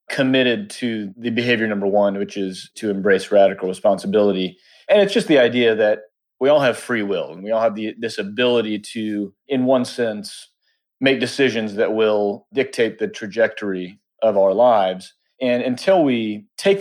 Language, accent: English, American